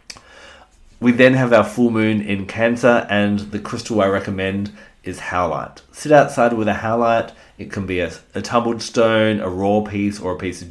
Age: 30-49